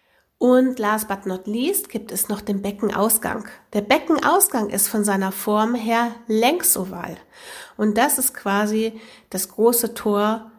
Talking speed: 140 wpm